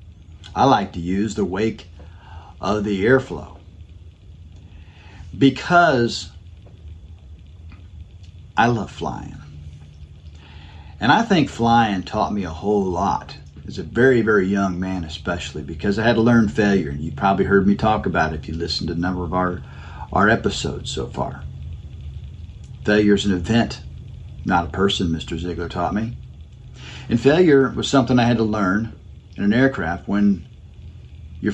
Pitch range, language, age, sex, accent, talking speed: 85-110 Hz, English, 50-69, male, American, 150 wpm